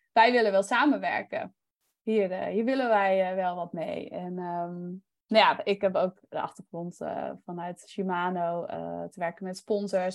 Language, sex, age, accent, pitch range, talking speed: Dutch, female, 20-39, Dutch, 185-220 Hz, 165 wpm